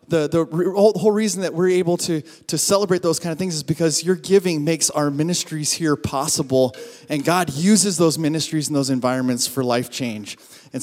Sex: male